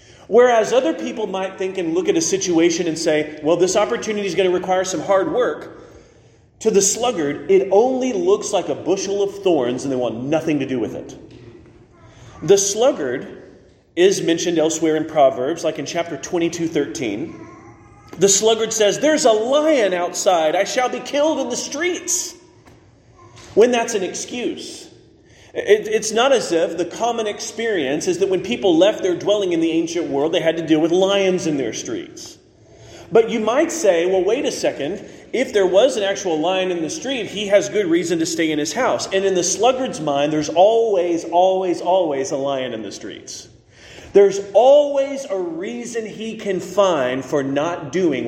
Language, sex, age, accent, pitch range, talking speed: English, male, 30-49, American, 165-260 Hz, 185 wpm